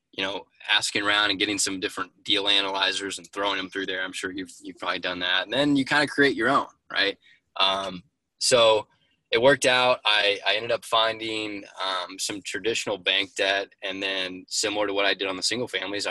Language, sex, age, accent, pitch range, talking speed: English, male, 20-39, American, 95-110 Hz, 210 wpm